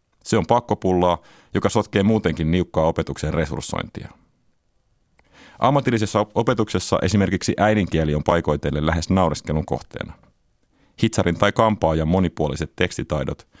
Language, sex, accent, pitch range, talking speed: Finnish, male, native, 80-100 Hz, 100 wpm